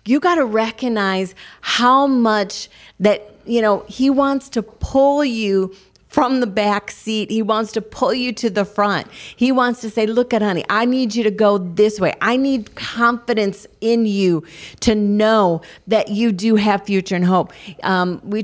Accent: American